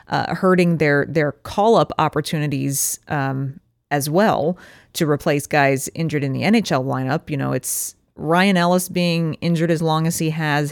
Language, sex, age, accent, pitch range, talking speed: English, female, 30-49, American, 150-190 Hz, 170 wpm